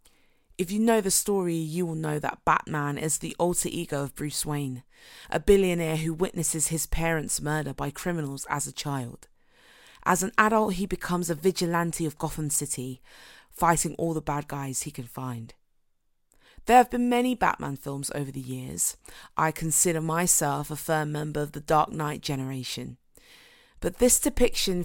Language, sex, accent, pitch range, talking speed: English, female, British, 145-180 Hz, 170 wpm